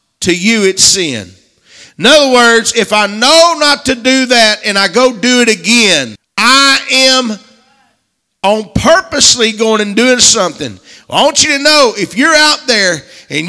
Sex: male